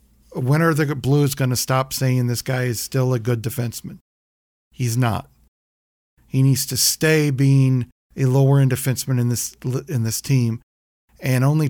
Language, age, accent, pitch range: English, 40-59, American, 115-145 Hz